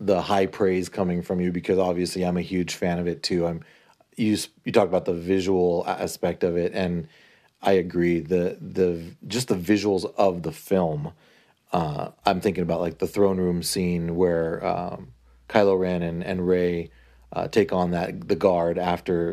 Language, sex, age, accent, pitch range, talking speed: English, male, 30-49, American, 90-105 Hz, 185 wpm